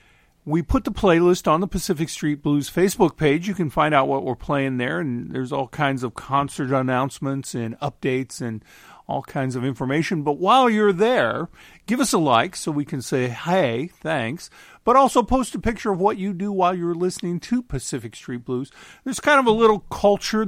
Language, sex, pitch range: English, male, 130-185 Hz